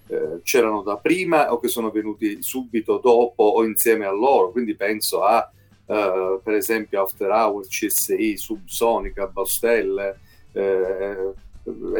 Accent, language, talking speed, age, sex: native, Italian, 125 wpm, 40-59, male